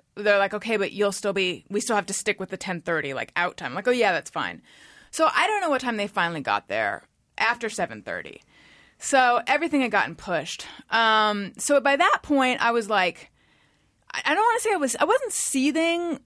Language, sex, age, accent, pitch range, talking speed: English, female, 30-49, American, 195-270 Hz, 220 wpm